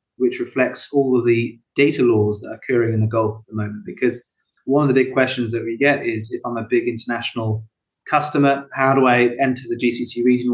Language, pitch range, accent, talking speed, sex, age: English, 115-130 Hz, British, 220 wpm, male, 30-49